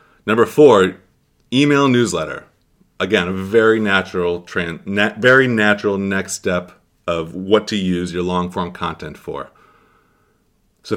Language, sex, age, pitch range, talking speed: English, male, 30-49, 90-115 Hz, 125 wpm